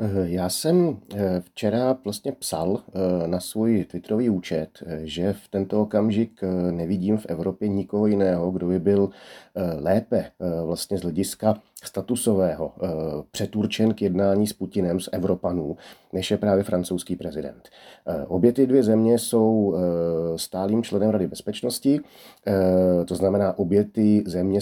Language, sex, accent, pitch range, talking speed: Czech, male, native, 90-110 Hz, 125 wpm